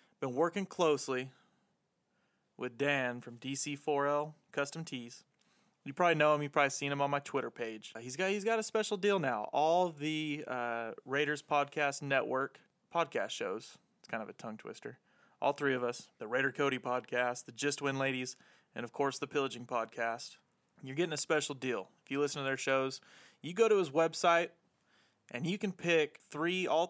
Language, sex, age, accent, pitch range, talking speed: English, male, 30-49, American, 135-170 Hz, 185 wpm